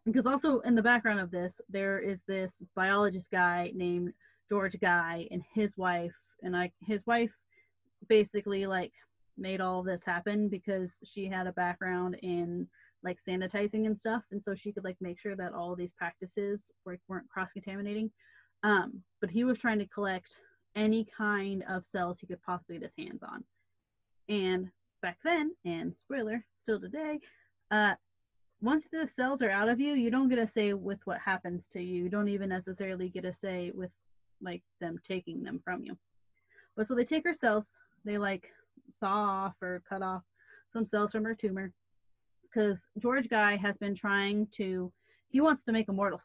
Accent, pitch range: American, 180-220 Hz